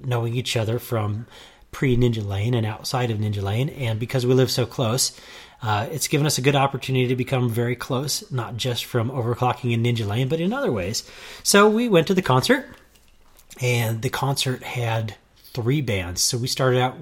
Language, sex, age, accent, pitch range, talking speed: English, male, 30-49, American, 115-145 Hz, 195 wpm